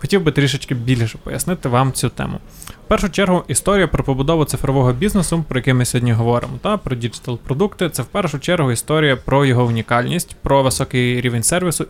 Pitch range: 125-155 Hz